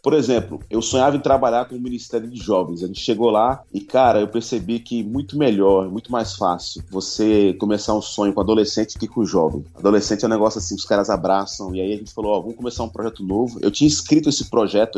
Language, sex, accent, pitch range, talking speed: Portuguese, male, Brazilian, 105-130 Hz, 235 wpm